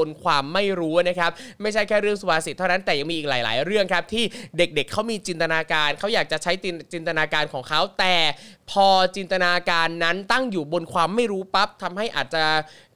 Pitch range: 175-225 Hz